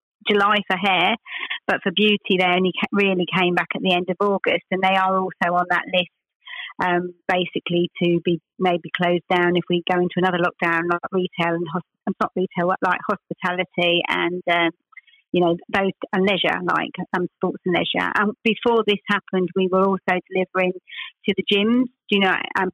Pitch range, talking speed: 175-195 Hz, 190 wpm